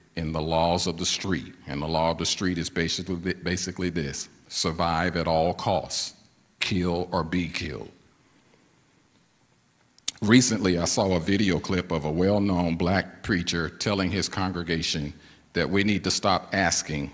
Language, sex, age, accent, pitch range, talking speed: English, male, 50-69, American, 80-95 Hz, 155 wpm